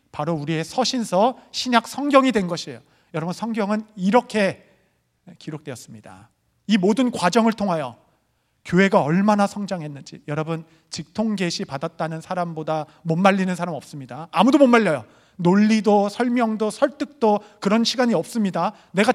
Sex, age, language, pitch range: male, 40-59, Korean, 150-210 Hz